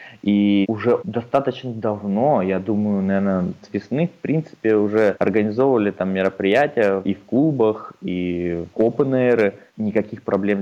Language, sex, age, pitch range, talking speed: Russian, male, 20-39, 100-125 Hz, 130 wpm